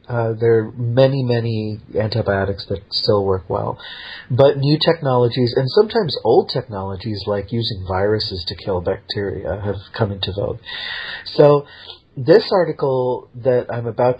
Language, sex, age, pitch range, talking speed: English, male, 40-59, 105-135 Hz, 140 wpm